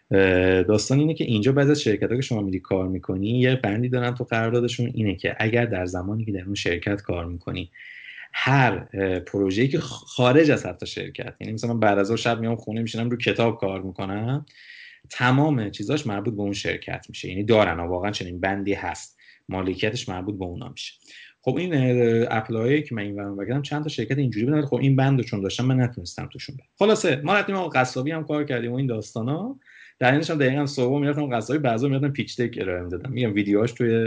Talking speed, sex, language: 190 wpm, male, Persian